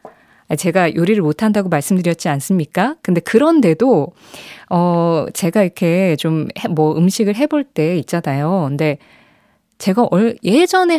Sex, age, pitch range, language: female, 20-39, 175-265 Hz, Korean